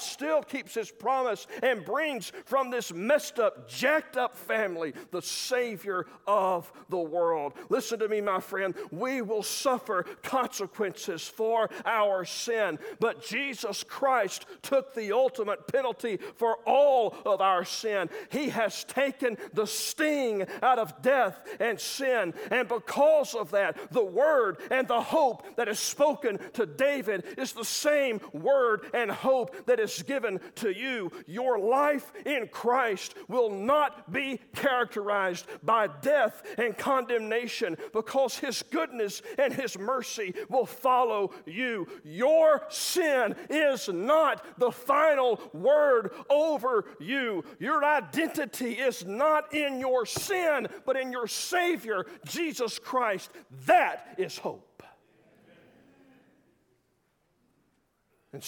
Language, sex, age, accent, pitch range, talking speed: English, male, 40-59, American, 215-285 Hz, 125 wpm